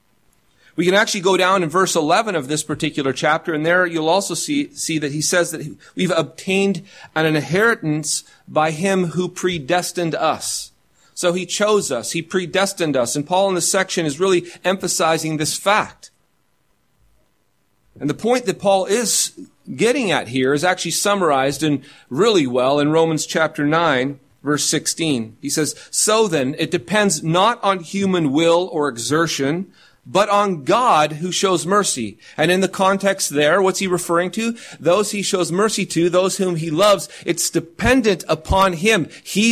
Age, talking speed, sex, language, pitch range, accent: 40-59, 165 wpm, male, English, 155-190 Hz, American